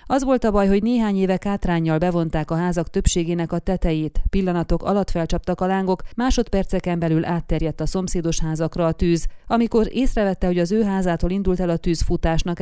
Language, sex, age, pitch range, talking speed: Hungarian, female, 30-49, 165-195 Hz, 180 wpm